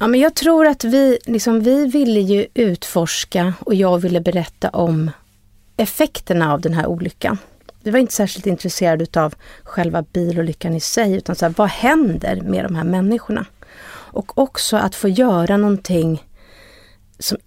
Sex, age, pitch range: female, 30-49, 170-230 Hz